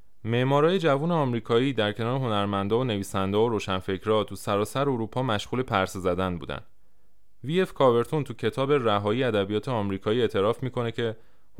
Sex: male